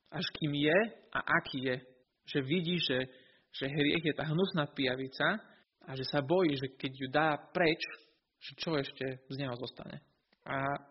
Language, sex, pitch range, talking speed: Slovak, male, 135-165 Hz, 170 wpm